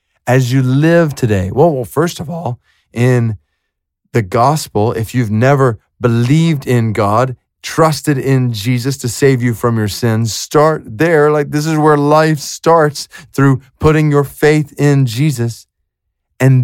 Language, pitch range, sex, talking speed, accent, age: English, 125-185 Hz, male, 150 wpm, American, 30-49